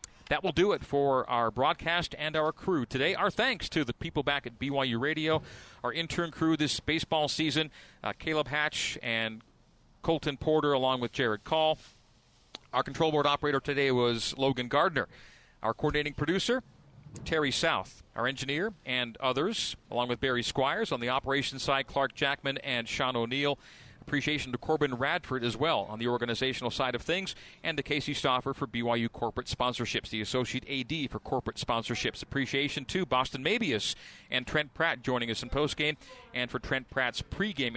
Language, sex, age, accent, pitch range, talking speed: English, male, 40-59, American, 120-150 Hz, 170 wpm